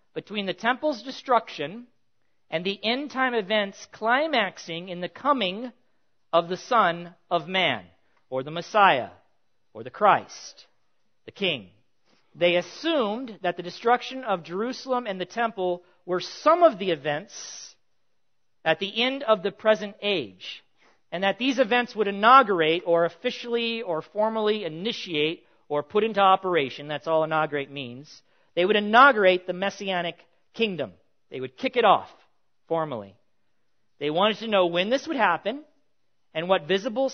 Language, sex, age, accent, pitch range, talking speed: English, male, 50-69, American, 160-225 Hz, 145 wpm